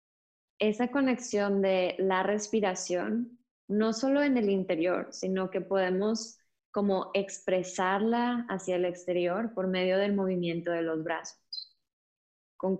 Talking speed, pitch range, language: 120 wpm, 180-215 Hz, Spanish